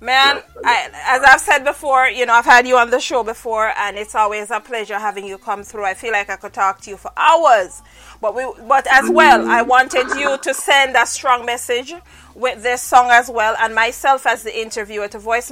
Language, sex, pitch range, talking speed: English, female, 215-260 Hz, 220 wpm